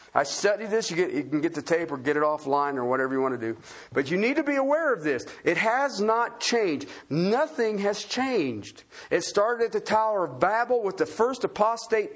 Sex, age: male, 50-69